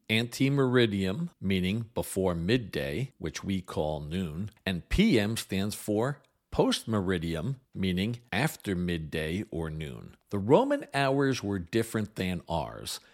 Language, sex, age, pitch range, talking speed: English, male, 50-69, 95-120 Hz, 115 wpm